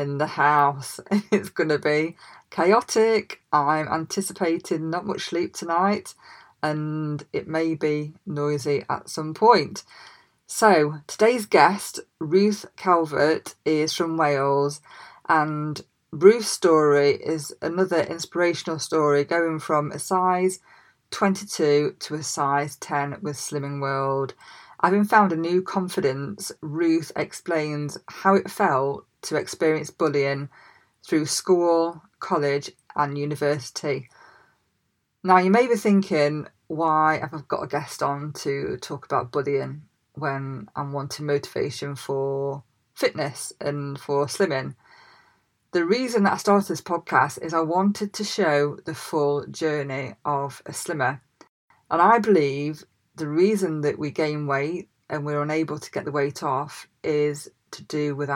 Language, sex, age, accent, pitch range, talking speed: English, female, 20-39, British, 145-175 Hz, 135 wpm